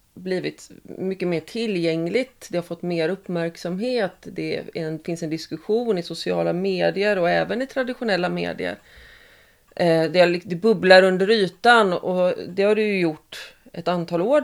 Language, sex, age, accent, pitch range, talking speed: Swedish, female, 30-49, native, 160-190 Hz, 160 wpm